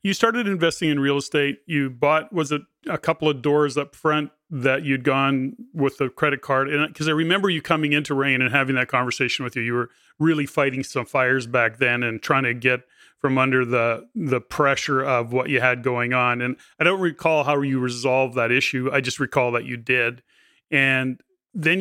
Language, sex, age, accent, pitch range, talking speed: English, male, 30-49, American, 125-150 Hz, 210 wpm